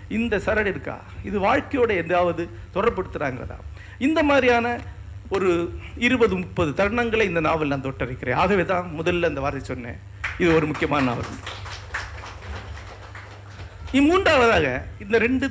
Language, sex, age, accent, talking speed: Tamil, male, 60-79, native, 110 wpm